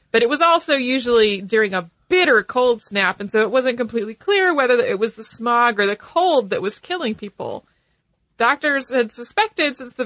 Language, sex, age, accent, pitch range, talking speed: English, female, 30-49, American, 205-255 Hz, 195 wpm